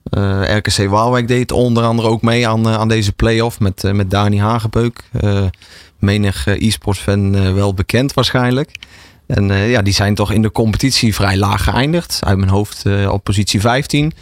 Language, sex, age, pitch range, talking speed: Dutch, male, 30-49, 100-120 Hz, 190 wpm